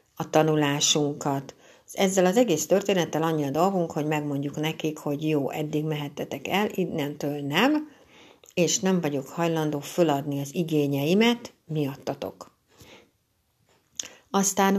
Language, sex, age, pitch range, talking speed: Hungarian, female, 60-79, 145-180 Hz, 115 wpm